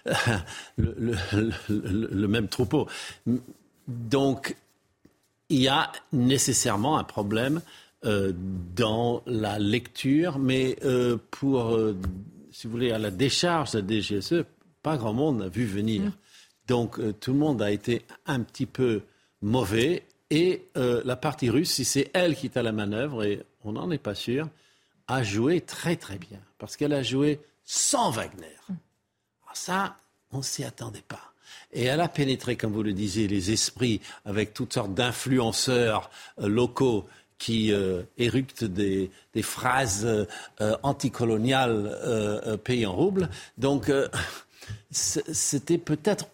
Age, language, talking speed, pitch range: 60-79, French, 150 wpm, 110-140 Hz